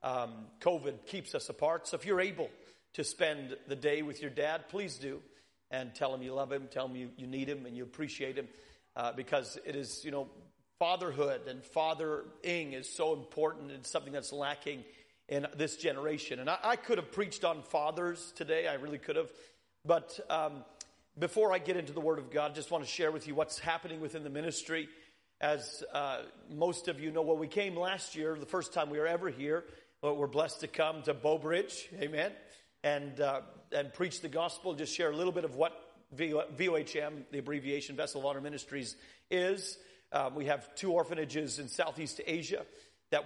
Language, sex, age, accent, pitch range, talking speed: English, male, 40-59, American, 145-170 Hz, 200 wpm